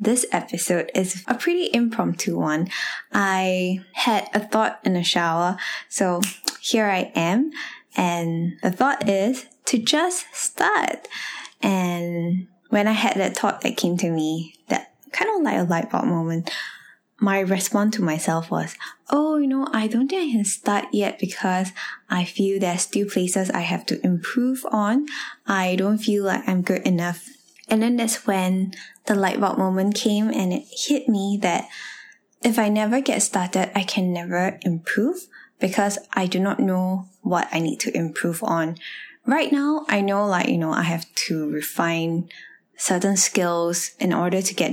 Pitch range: 180-235 Hz